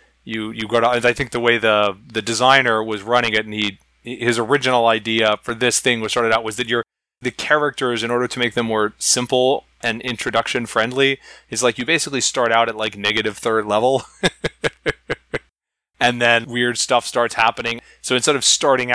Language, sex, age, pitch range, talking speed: English, male, 20-39, 110-125 Hz, 195 wpm